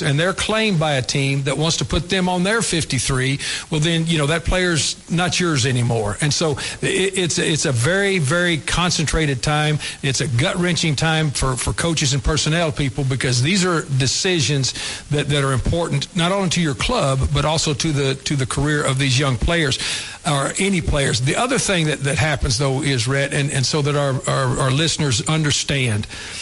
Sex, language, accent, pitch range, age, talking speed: male, English, American, 135-170 Hz, 60-79, 200 wpm